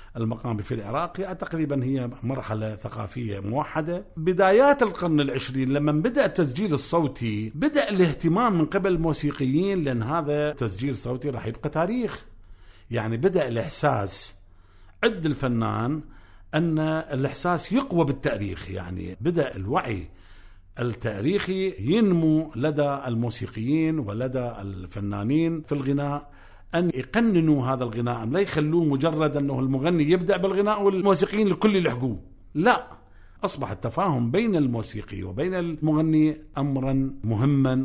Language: Arabic